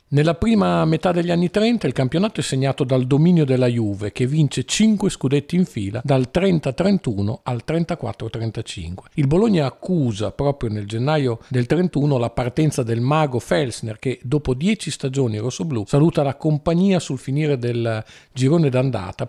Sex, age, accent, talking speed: male, 50-69, native, 155 wpm